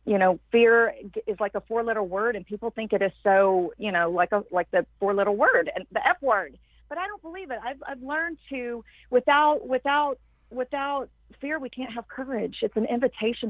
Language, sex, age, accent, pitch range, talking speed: English, female, 40-59, American, 185-235 Hz, 205 wpm